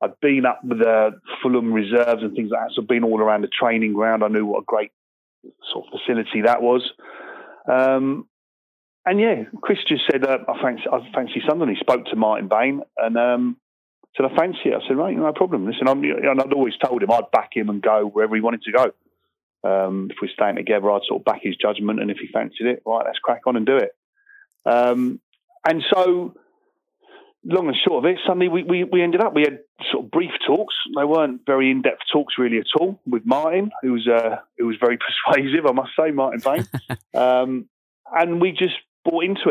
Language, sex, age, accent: English, male, 40-59, British